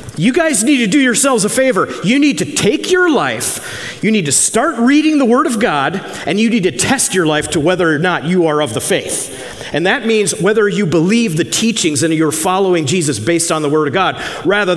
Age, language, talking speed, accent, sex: 40-59, English, 235 wpm, American, male